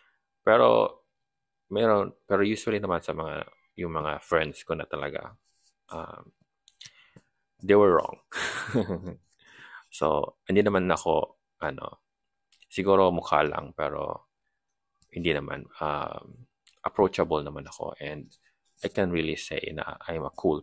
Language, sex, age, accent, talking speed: Filipino, male, 20-39, native, 120 wpm